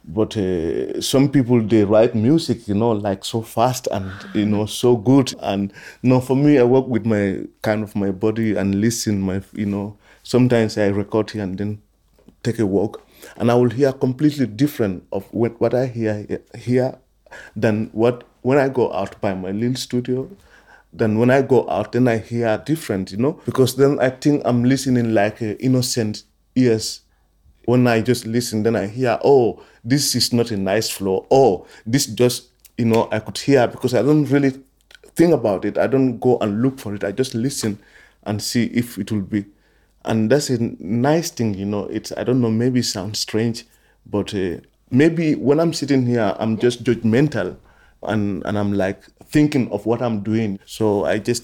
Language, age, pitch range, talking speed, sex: Danish, 30-49, 105-125 Hz, 195 wpm, male